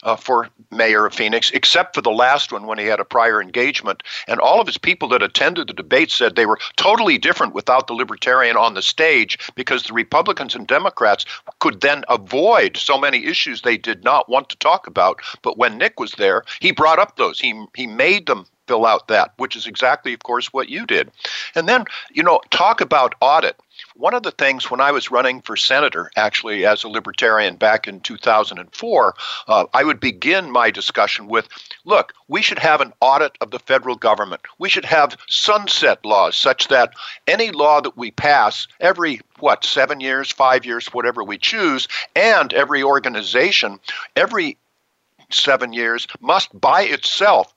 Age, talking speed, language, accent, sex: 50-69, 190 wpm, English, American, male